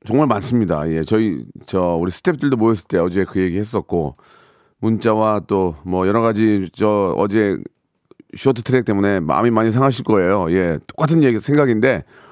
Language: Korean